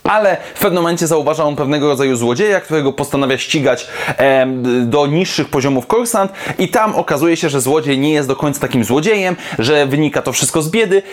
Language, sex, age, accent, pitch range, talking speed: Polish, male, 20-39, native, 135-170 Hz, 185 wpm